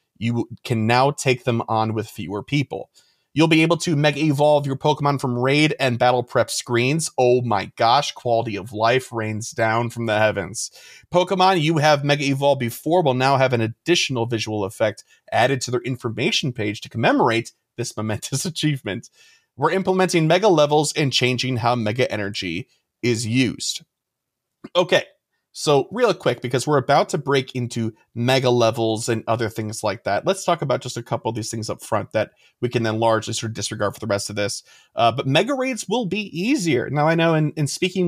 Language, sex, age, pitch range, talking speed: English, male, 30-49, 115-155 Hz, 190 wpm